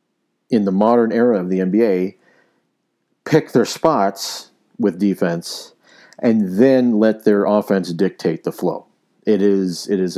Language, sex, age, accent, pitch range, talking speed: English, male, 50-69, American, 90-115 Hz, 140 wpm